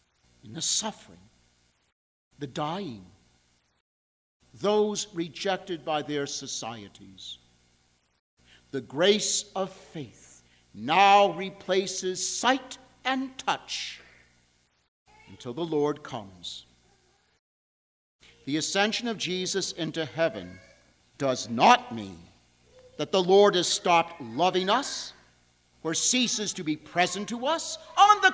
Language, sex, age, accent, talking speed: English, male, 50-69, American, 100 wpm